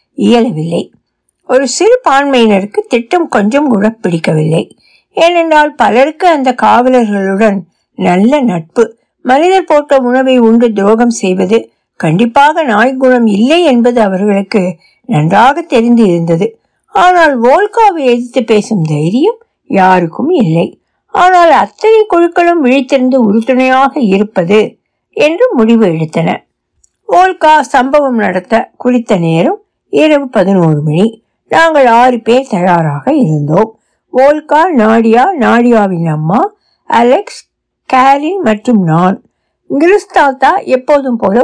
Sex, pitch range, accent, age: female, 200-290 Hz, native, 60-79